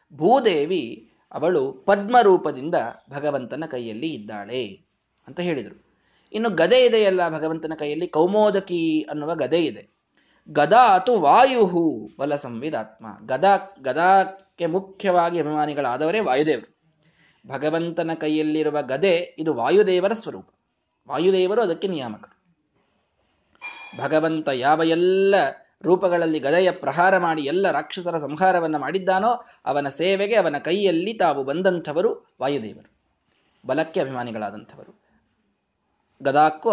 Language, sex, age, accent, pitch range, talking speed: Kannada, male, 20-39, native, 155-200 Hz, 95 wpm